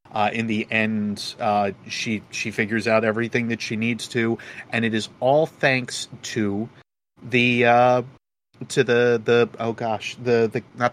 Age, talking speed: 30-49, 165 wpm